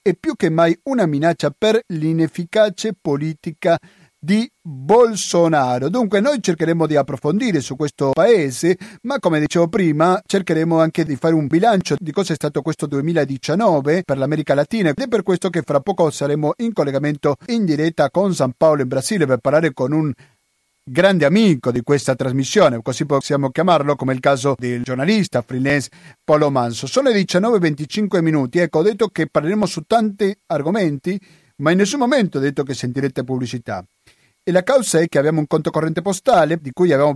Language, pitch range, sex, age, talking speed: Italian, 140-185 Hz, male, 40-59, 180 wpm